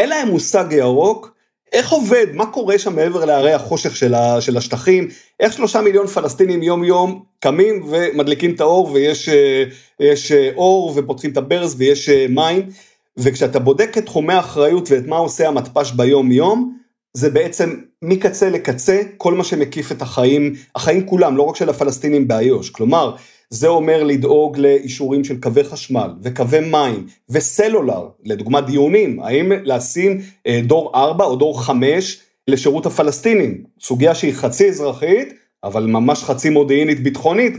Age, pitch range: 40-59, 135-180 Hz